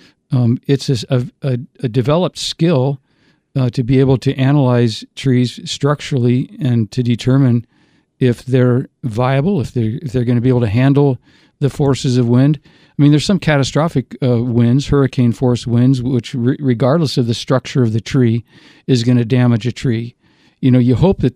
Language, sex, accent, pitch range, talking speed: English, male, American, 125-145 Hz, 175 wpm